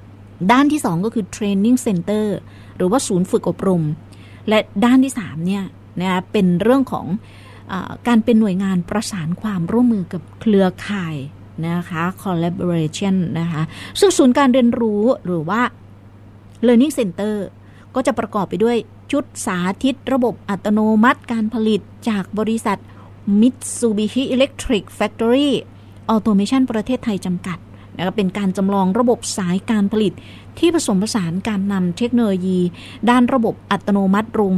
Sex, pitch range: female, 180-230 Hz